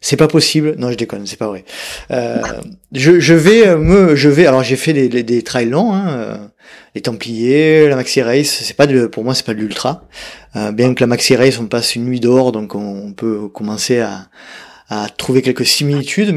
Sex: male